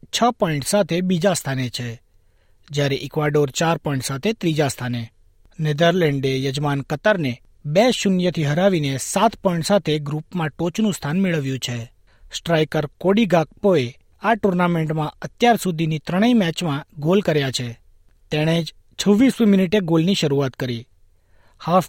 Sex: male